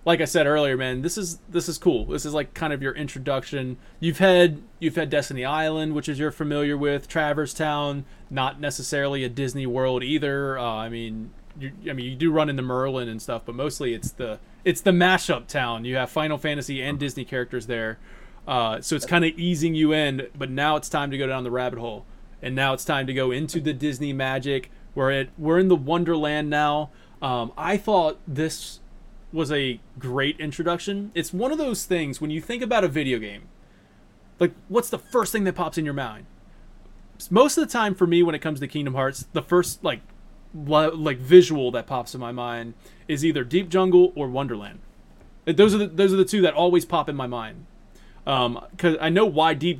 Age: 20-39